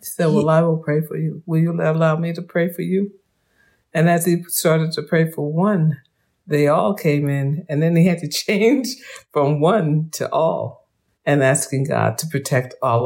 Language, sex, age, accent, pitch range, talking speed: English, female, 50-69, American, 125-165 Hz, 200 wpm